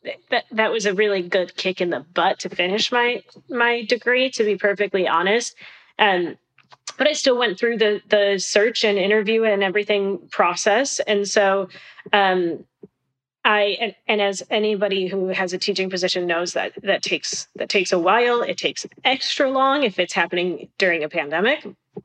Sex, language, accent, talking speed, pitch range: female, English, American, 175 wpm, 185-215 Hz